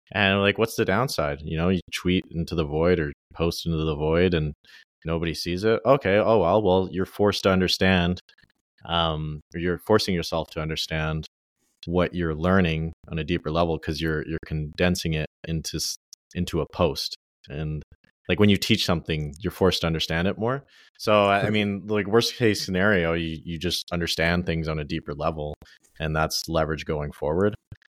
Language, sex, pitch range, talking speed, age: English, male, 80-90 Hz, 180 wpm, 30-49